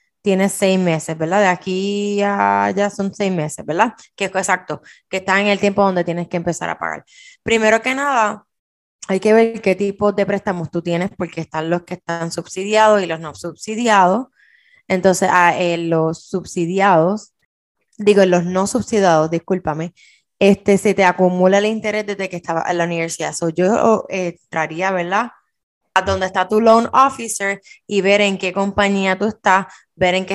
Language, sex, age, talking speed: Spanish, female, 20-39, 180 wpm